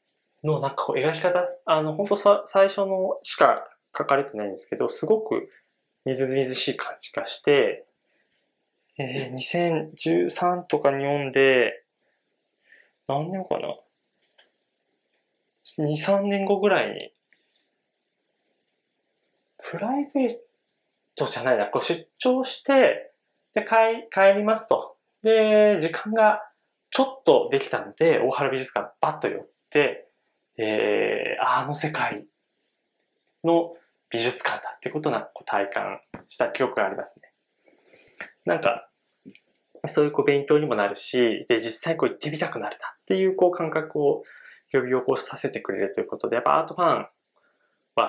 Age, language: 20-39, Japanese